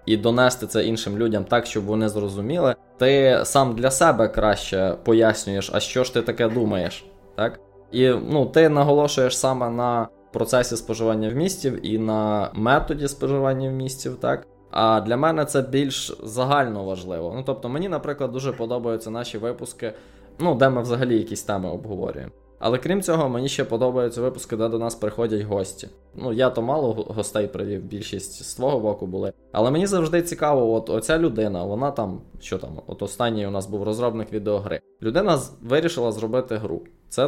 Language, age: Ukrainian, 20-39